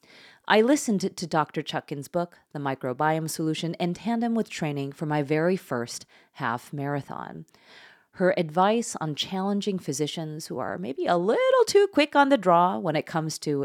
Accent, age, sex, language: American, 30-49, female, English